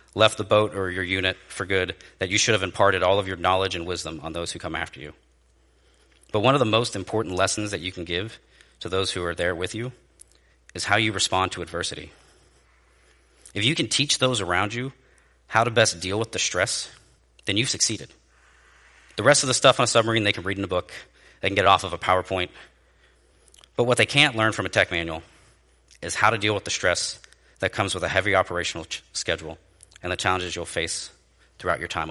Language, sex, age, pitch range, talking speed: English, male, 40-59, 75-110 Hz, 225 wpm